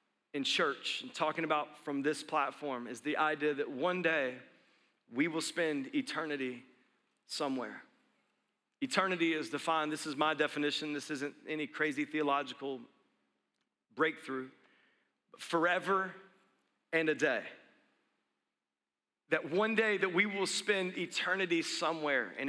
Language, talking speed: English, 125 wpm